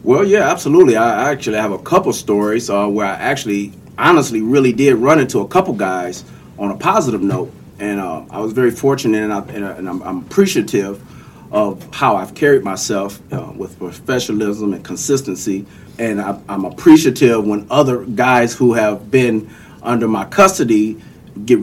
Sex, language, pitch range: male, English, 110-145 Hz